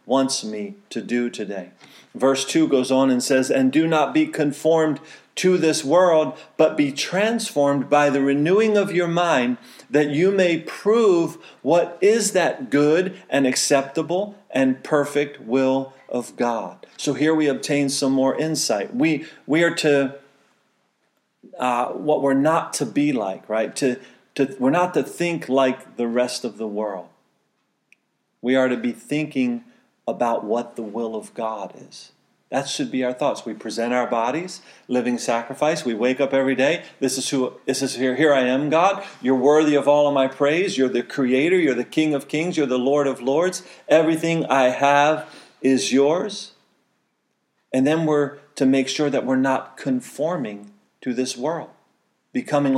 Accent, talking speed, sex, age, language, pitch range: American, 170 wpm, male, 40-59, English, 125-160 Hz